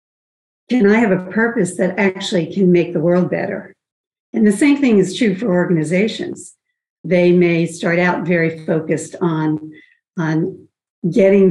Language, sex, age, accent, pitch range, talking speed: English, female, 60-79, American, 165-200 Hz, 150 wpm